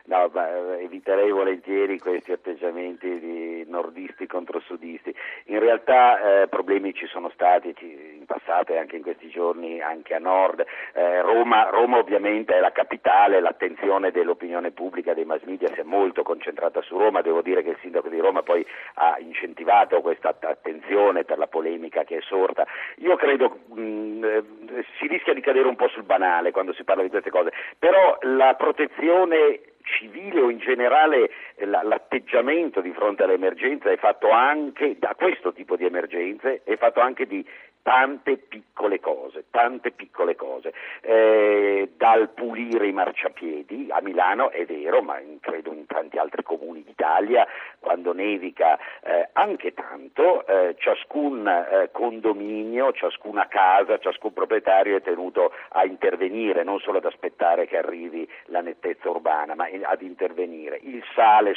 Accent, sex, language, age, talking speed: native, male, Italian, 50-69, 155 wpm